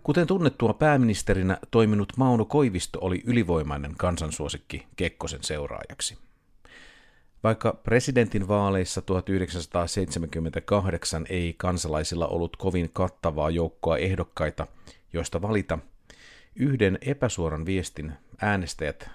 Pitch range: 85-110 Hz